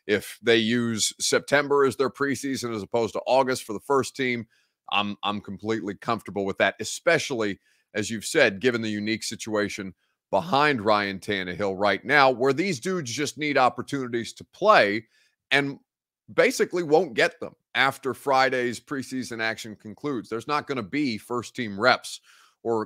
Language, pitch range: English, 105-135 Hz